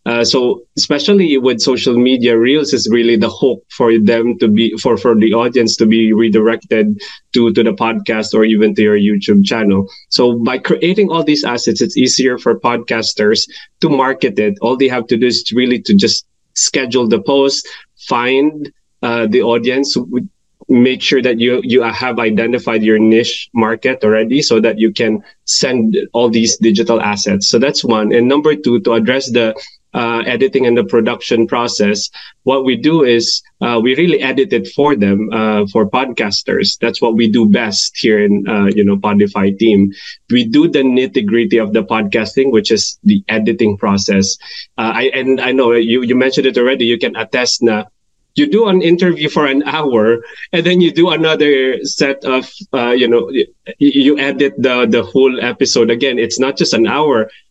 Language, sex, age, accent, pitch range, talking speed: English, male, 20-39, Filipino, 110-135 Hz, 185 wpm